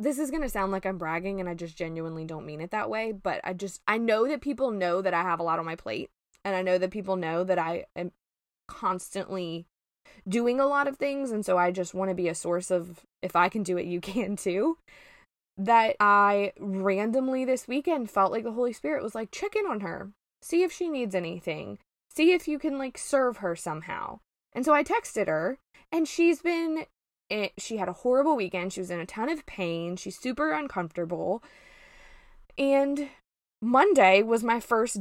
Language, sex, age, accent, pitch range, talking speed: English, female, 20-39, American, 180-275 Hz, 210 wpm